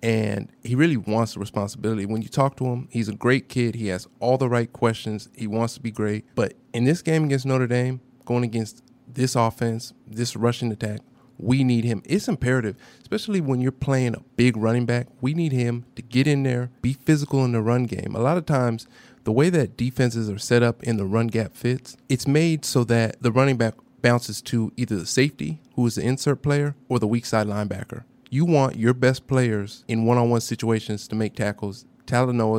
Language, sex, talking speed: English, male, 215 wpm